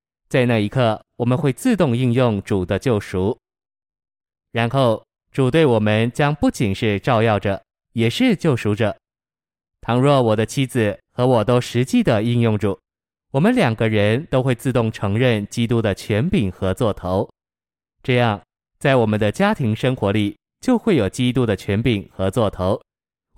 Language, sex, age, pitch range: Chinese, male, 20-39, 105-130 Hz